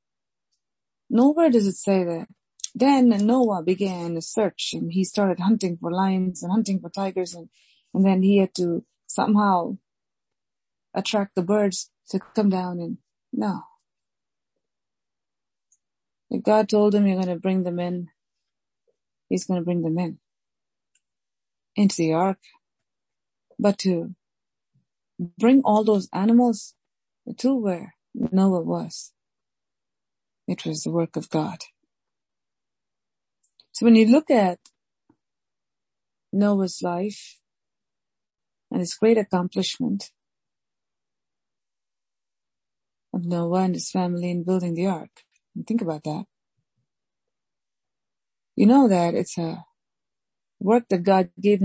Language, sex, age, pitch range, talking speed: English, female, 30-49, 175-210 Hz, 115 wpm